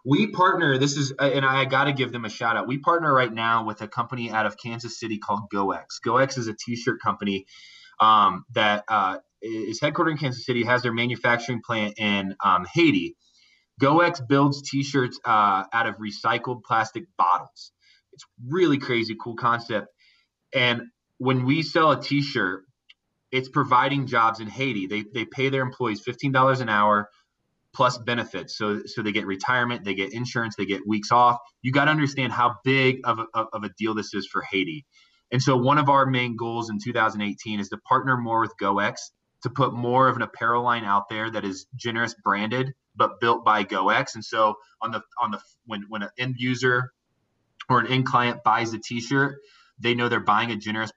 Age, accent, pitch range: 20-39, American, 110-130 Hz